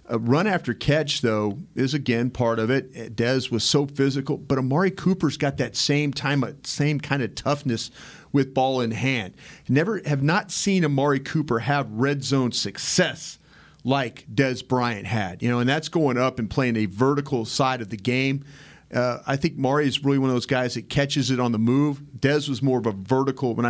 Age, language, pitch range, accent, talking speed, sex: 40-59, English, 115-140 Hz, American, 205 wpm, male